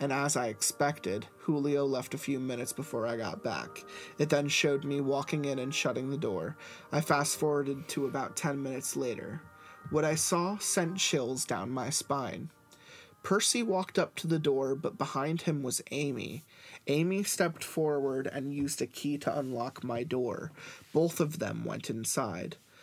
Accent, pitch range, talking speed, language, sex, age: American, 135-160 Hz, 170 wpm, English, male, 30-49